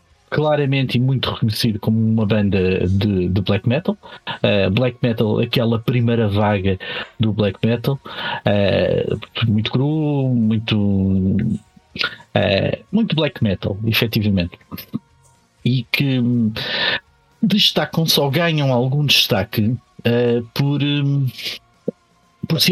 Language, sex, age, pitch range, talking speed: Portuguese, male, 50-69, 105-145 Hz, 110 wpm